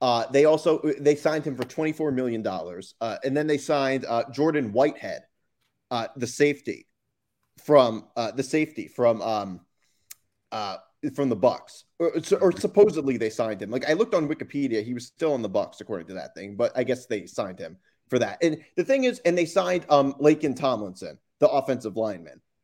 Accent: American